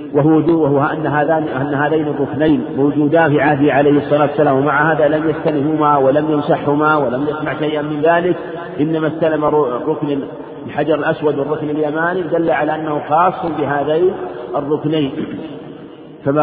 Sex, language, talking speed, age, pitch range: male, Arabic, 140 wpm, 50-69, 145-160 Hz